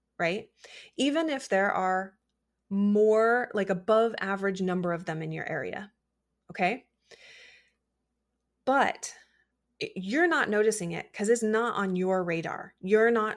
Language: English